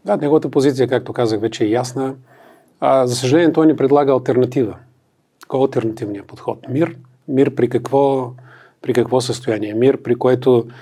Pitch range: 115-140 Hz